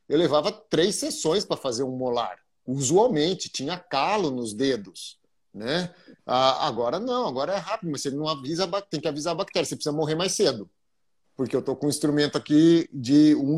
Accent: Brazilian